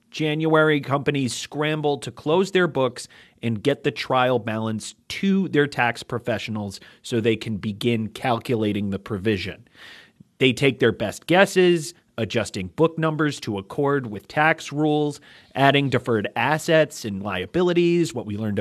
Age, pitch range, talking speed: 30-49, 110-150 Hz, 140 wpm